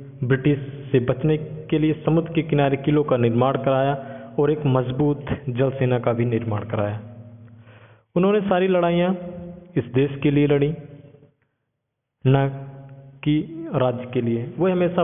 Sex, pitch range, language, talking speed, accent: male, 135-155 Hz, Hindi, 140 wpm, native